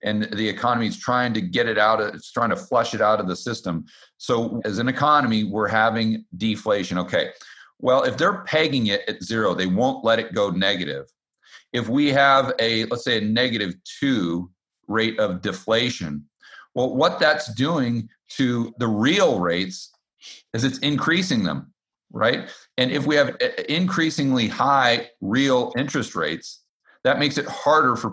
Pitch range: 100-130 Hz